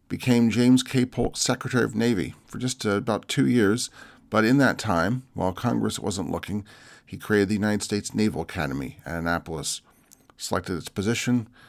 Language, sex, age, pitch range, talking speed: English, male, 40-59, 90-120 Hz, 170 wpm